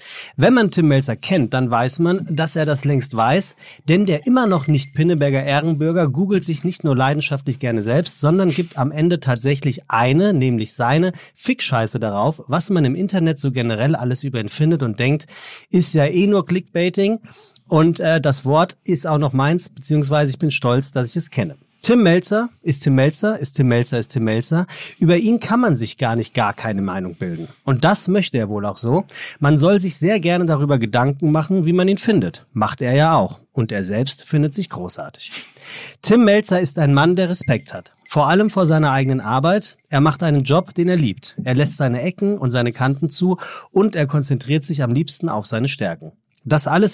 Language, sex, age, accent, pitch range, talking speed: German, male, 40-59, German, 135-175 Hz, 205 wpm